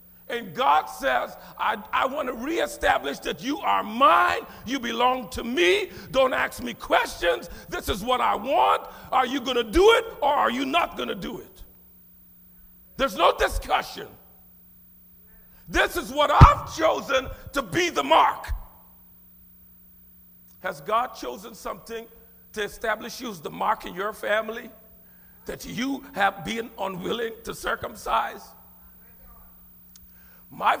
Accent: American